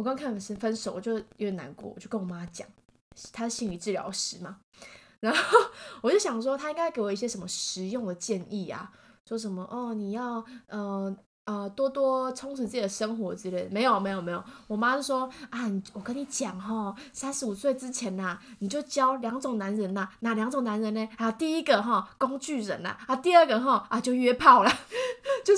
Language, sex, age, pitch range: Chinese, female, 20-39, 195-270 Hz